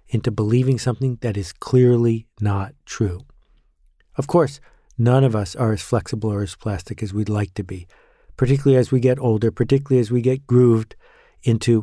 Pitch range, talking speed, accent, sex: 105-125 Hz, 180 wpm, American, male